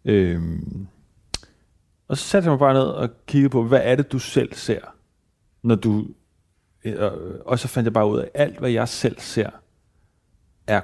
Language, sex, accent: Danish, male, native